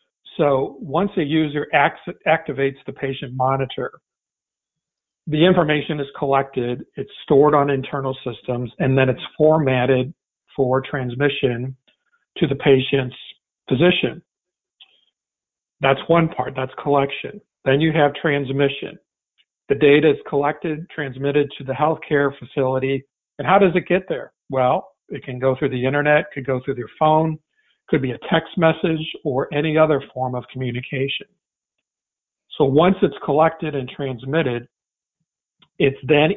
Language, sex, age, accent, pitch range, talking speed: English, male, 50-69, American, 130-150 Hz, 135 wpm